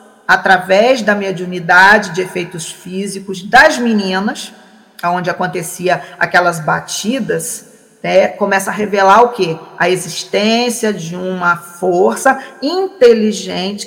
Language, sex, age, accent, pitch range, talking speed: Portuguese, female, 40-59, Brazilian, 190-240 Hz, 105 wpm